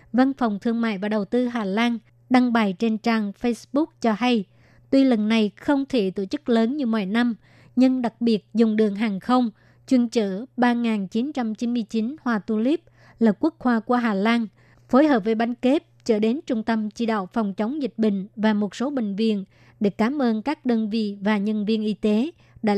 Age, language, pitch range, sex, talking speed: 20-39, Vietnamese, 215-245 Hz, male, 205 wpm